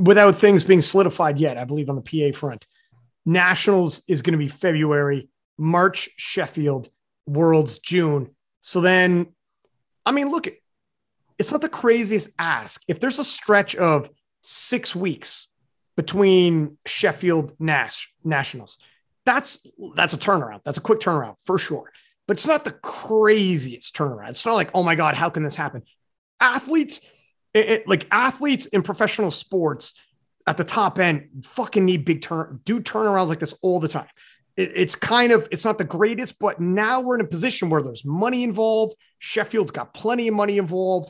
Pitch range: 155-220 Hz